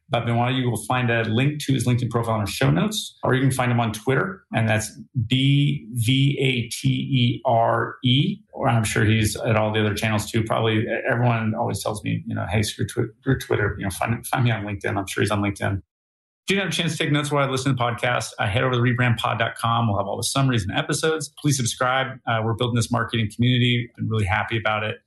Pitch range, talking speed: 105-125 Hz, 245 wpm